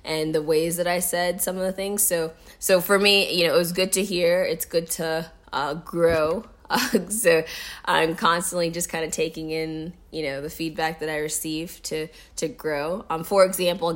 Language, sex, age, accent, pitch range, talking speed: English, female, 20-39, American, 155-175 Hz, 210 wpm